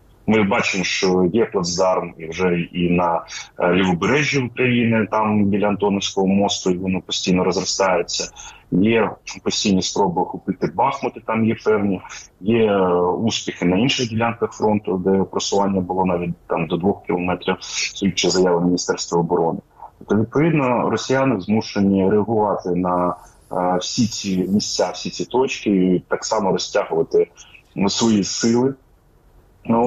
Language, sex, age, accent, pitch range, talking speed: Ukrainian, male, 20-39, native, 90-110 Hz, 130 wpm